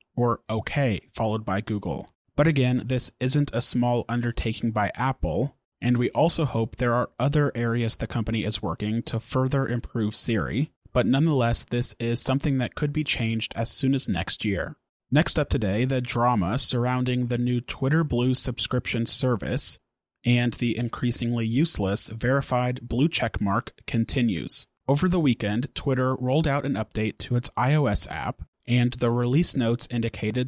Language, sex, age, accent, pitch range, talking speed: English, male, 30-49, American, 115-130 Hz, 160 wpm